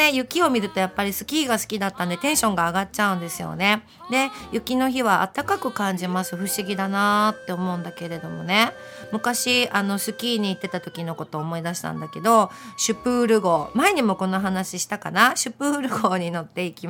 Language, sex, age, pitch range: Japanese, female, 40-59, 180-240 Hz